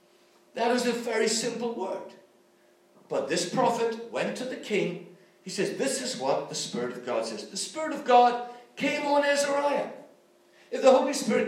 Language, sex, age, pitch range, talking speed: English, male, 60-79, 200-275 Hz, 180 wpm